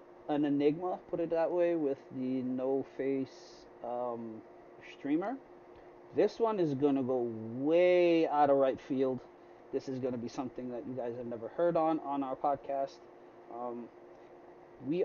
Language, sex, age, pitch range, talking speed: English, male, 30-49, 130-160 Hz, 155 wpm